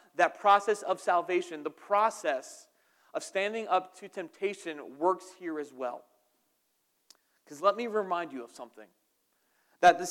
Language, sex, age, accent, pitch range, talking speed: English, male, 30-49, American, 170-215 Hz, 140 wpm